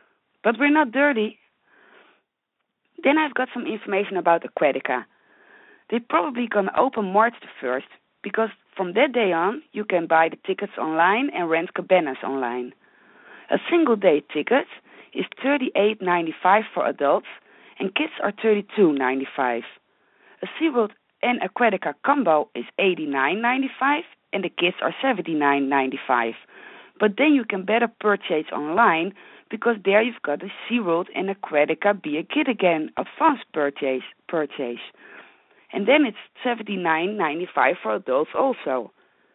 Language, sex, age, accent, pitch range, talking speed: English, female, 30-49, Dutch, 170-260 Hz, 150 wpm